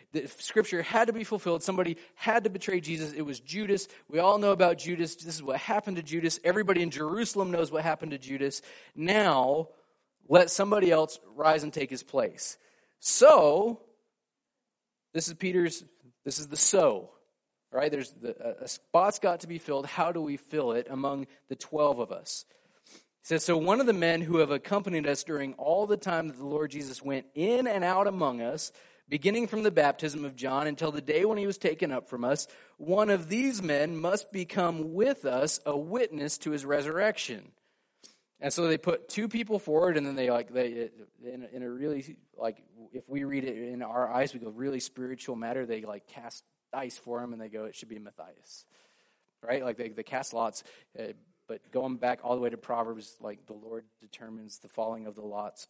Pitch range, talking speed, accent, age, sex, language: 130-195 Hz, 200 wpm, American, 30-49, male, English